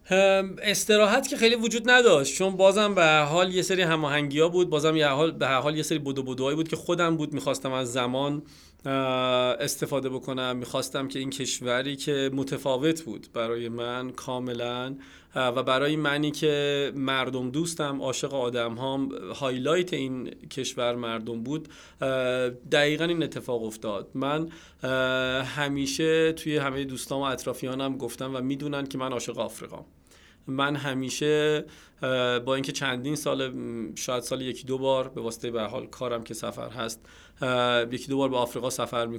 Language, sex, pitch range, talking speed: Persian, male, 125-150 Hz, 150 wpm